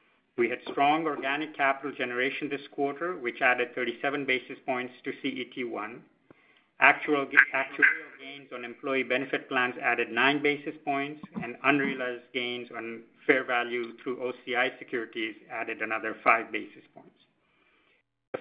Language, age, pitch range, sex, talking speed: English, 50-69, 120-145 Hz, male, 135 wpm